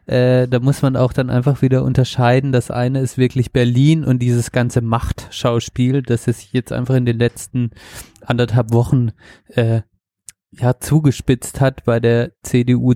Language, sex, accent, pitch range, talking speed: German, male, German, 120-130 Hz, 160 wpm